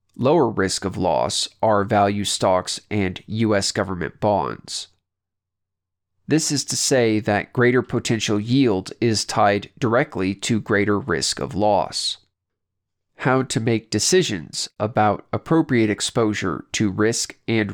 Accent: American